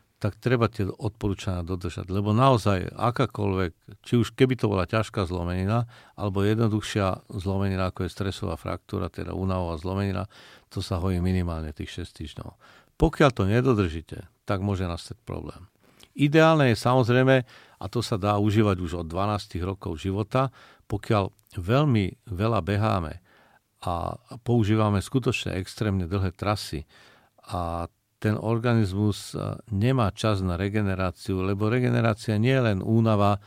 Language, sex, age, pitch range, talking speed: Slovak, male, 50-69, 95-110 Hz, 135 wpm